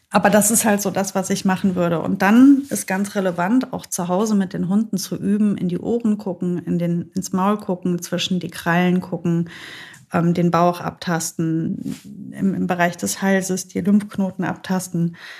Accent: German